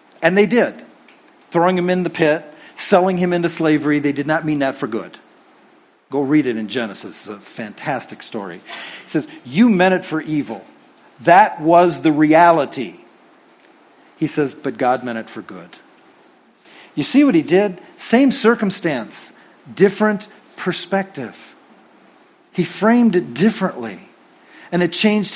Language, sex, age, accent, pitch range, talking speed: English, male, 40-59, American, 160-215 Hz, 150 wpm